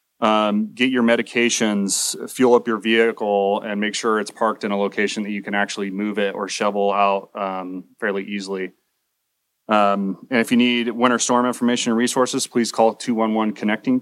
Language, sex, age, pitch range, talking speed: English, male, 30-49, 105-120 Hz, 180 wpm